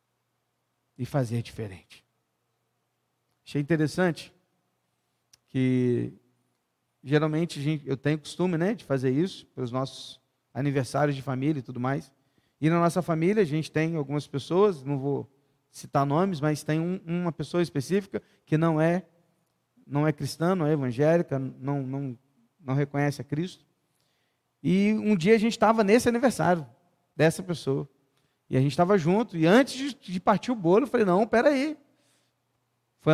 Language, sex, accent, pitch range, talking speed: Portuguese, male, Brazilian, 135-200 Hz, 155 wpm